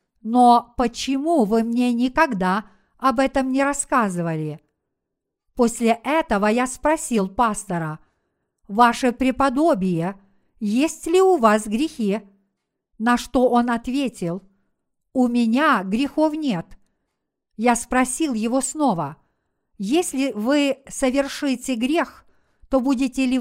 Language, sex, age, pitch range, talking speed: Russian, female, 50-69, 215-270 Hz, 105 wpm